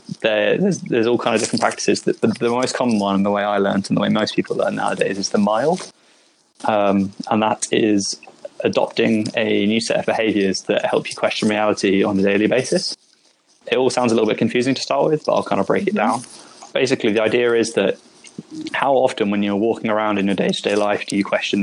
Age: 20-39